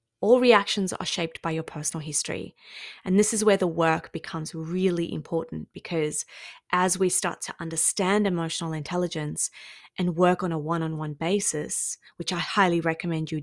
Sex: female